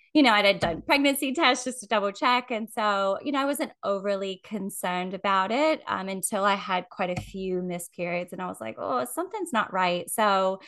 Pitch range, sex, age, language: 175-205 Hz, female, 10-29, English